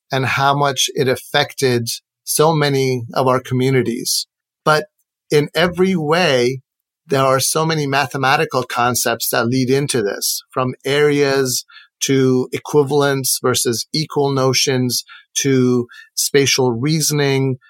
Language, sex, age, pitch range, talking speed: English, male, 40-59, 130-155 Hz, 115 wpm